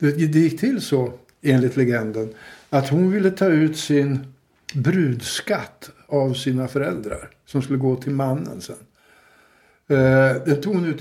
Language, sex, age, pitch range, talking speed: Swedish, male, 60-79, 135-155 Hz, 140 wpm